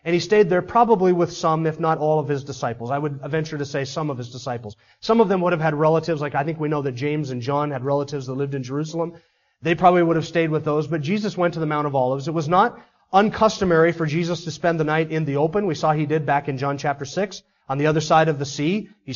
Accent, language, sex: American, English, male